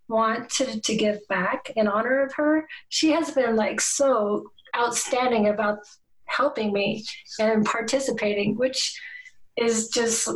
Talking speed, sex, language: 135 wpm, female, English